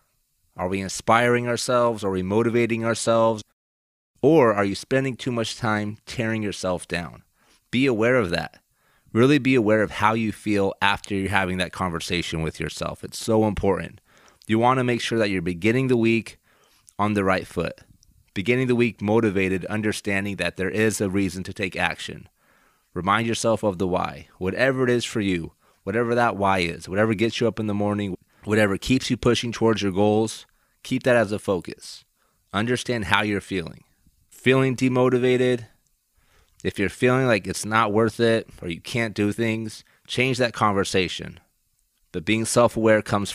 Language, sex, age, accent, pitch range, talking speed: English, male, 30-49, American, 95-115 Hz, 170 wpm